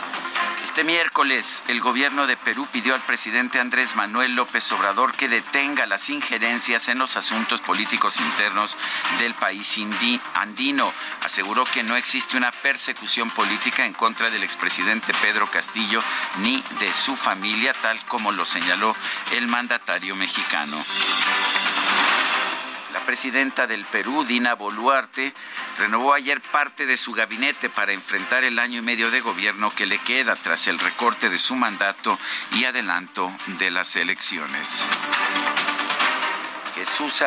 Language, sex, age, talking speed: Spanish, male, 50-69, 135 wpm